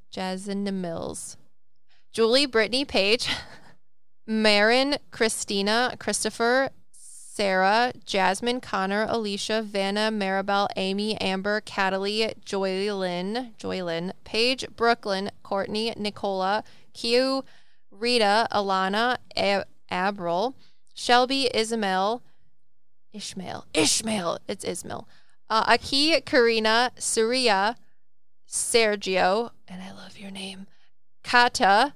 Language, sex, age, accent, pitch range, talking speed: English, female, 20-39, American, 195-235 Hz, 85 wpm